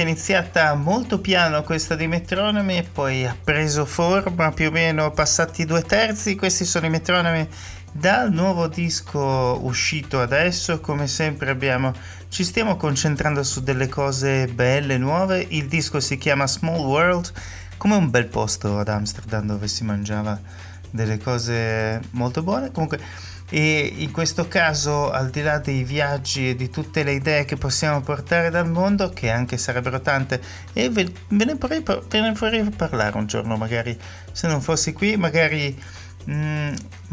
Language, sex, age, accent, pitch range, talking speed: Italian, male, 30-49, native, 115-165 Hz, 160 wpm